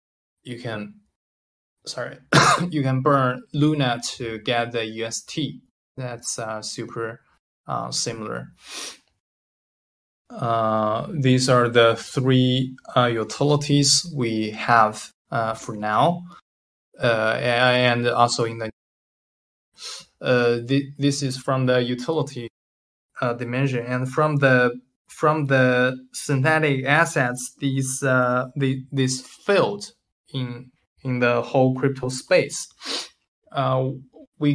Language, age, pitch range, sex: English, 20-39, 115-135 Hz, male